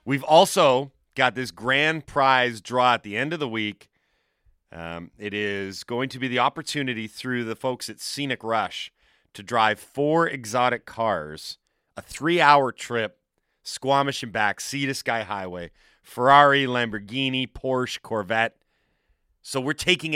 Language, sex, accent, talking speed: English, male, American, 145 wpm